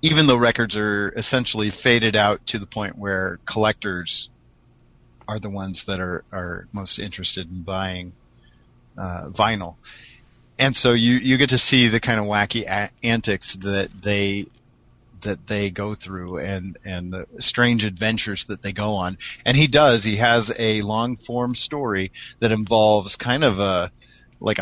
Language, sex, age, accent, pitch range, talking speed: English, male, 40-59, American, 100-120 Hz, 160 wpm